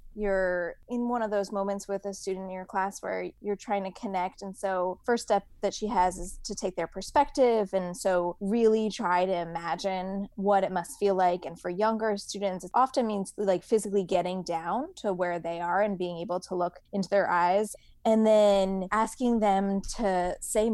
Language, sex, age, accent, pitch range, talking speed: English, female, 20-39, American, 185-220 Hz, 200 wpm